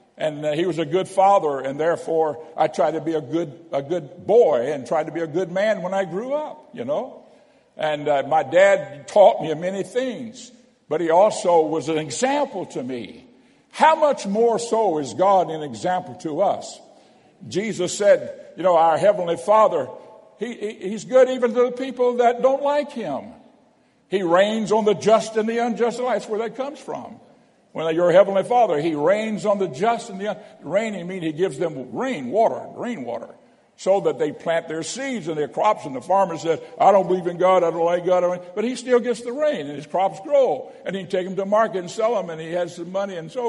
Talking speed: 220 wpm